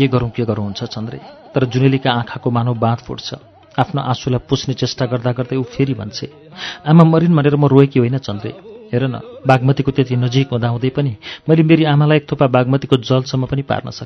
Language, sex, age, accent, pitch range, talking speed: English, male, 40-59, Indian, 125-145 Hz, 140 wpm